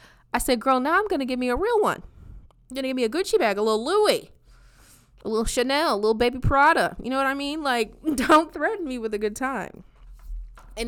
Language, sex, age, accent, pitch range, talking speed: English, female, 20-39, American, 180-255 Hz, 230 wpm